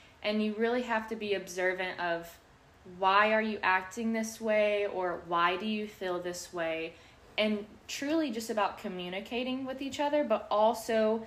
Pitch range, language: 185-225 Hz, English